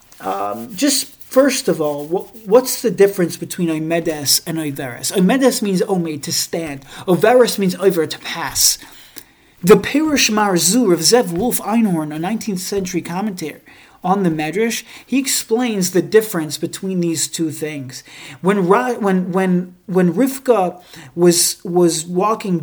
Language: English